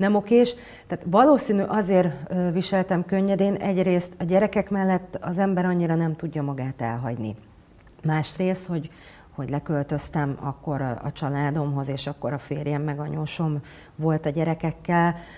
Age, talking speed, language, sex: 40-59, 135 wpm, Hungarian, female